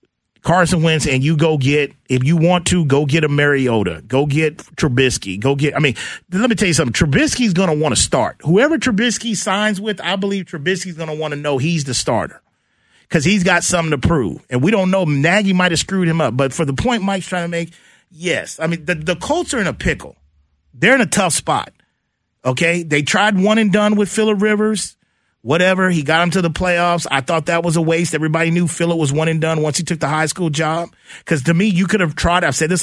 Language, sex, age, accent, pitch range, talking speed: English, male, 30-49, American, 150-190 Hz, 240 wpm